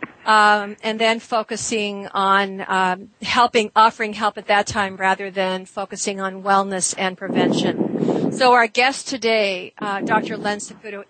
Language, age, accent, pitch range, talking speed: English, 50-69, American, 195-230 Hz, 145 wpm